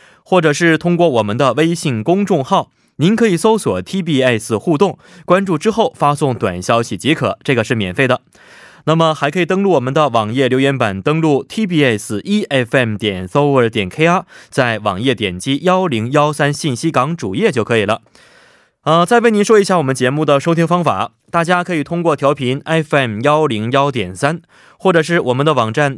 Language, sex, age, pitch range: Korean, male, 20-39, 125-175 Hz